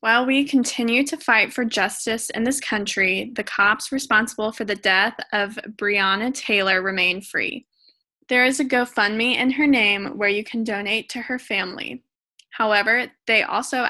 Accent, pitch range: American, 205-255 Hz